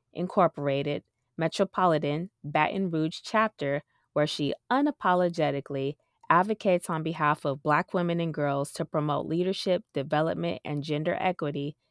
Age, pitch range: 20-39, 145-180 Hz